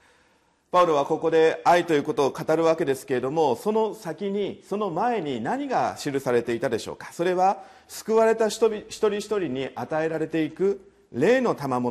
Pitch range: 145-210 Hz